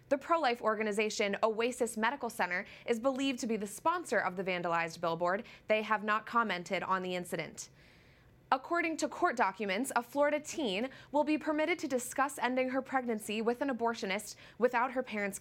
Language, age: English, 20-39